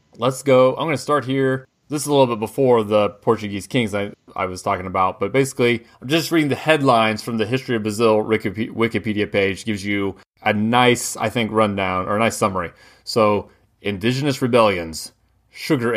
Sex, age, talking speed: male, 30-49, 190 wpm